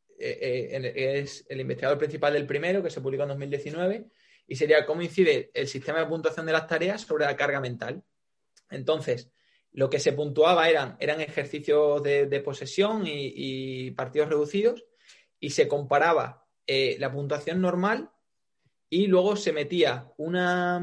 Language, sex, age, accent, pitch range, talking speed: Spanish, male, 20-39, Spanish, 145-190 Hz, 155 wpm